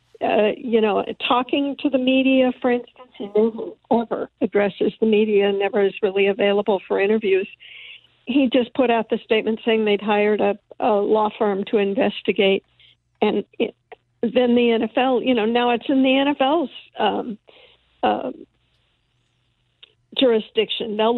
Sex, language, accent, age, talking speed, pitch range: female, English, American, 60-79, 145 wpm, 215-250 Hz